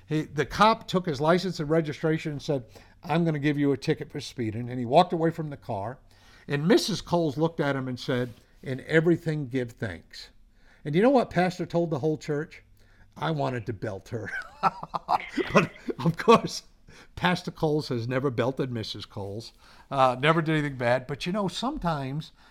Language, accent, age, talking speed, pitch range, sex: English, American, 50-69, 185 wpm, 125-165 Hz, male